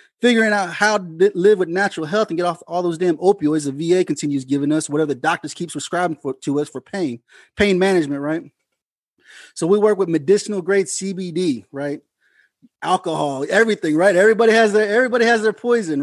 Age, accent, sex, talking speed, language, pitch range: 30-49, American, male, 180 wpm, English, 155-205 Hz